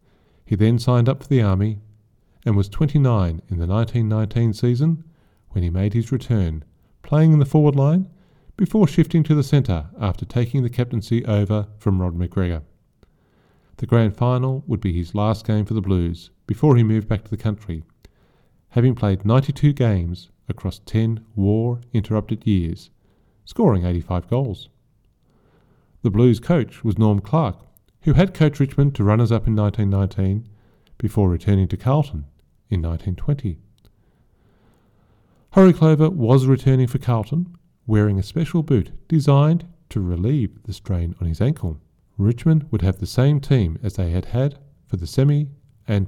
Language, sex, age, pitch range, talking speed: English, male, 40-59, 100-140 Hz, 155 wpm